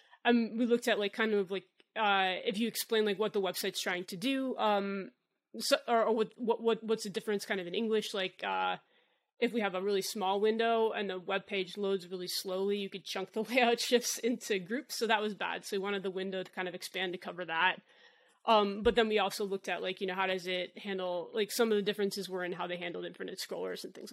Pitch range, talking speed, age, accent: 185-225 Hz, 250 wpm, 20-39, American